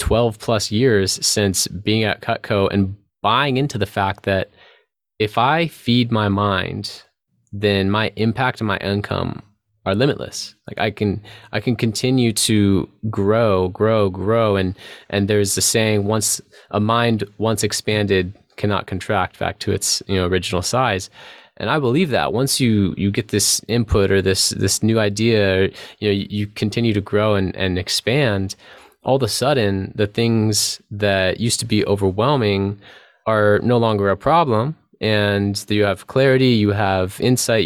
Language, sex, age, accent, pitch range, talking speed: English, male, 20-39, American, 100-115 Hz, 165 wpm